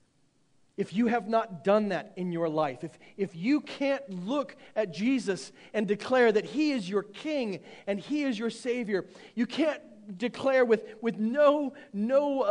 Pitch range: 155-230 Hz